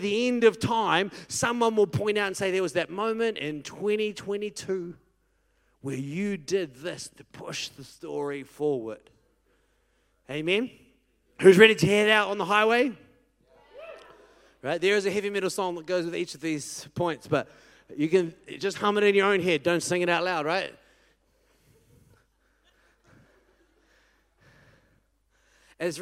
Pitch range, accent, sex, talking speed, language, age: 150-210 Hz, Australian, male, 150 wpm, English, 30-49